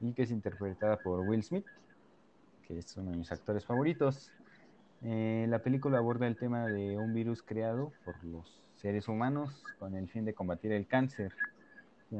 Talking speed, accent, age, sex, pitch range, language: 175 wpm, Mexican, 30-49, male, 100-130 Hz, Spanish